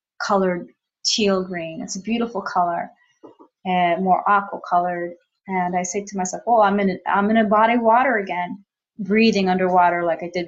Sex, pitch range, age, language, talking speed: female, 180-225 Hz, 30-49, English, 180 wpm